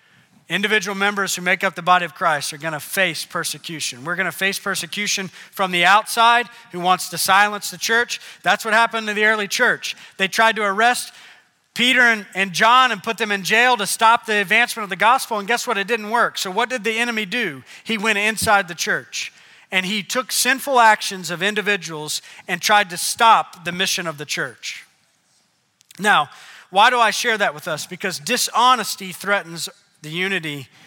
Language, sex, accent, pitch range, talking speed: English, male, American, 180-230 Hz, 190 wpm